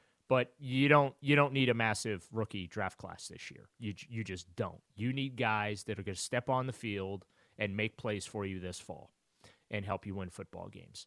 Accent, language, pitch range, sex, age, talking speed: American, English, 100-125 Hz, male, 30-49, 220 wpm